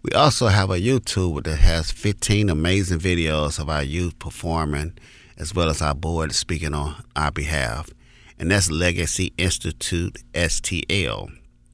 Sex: male